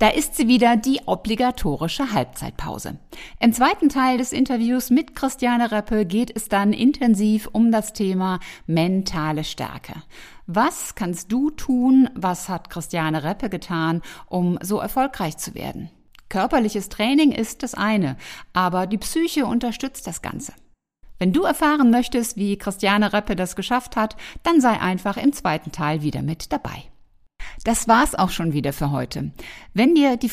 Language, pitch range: German, 175-245 Hz